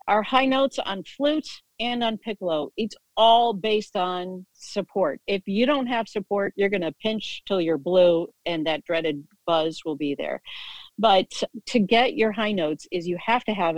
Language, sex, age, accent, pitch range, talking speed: English, female, 50-69, American, 170-220 Hz, 185 wpm